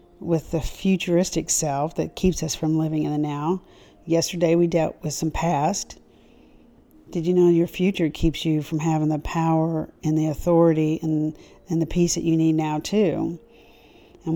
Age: 50-69